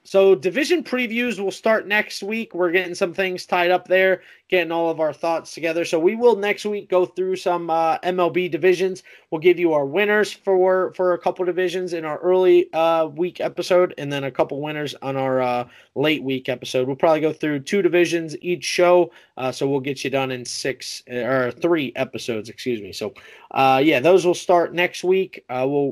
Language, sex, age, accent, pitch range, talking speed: English, male, 20-39, American, 150-190 Hz, 205 wpm